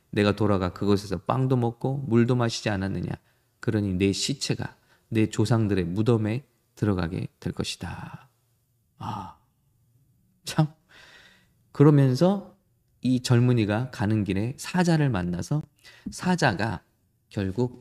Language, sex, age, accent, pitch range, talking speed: English, male, 20-39, Korean, 105-140 Hz, 90 wpm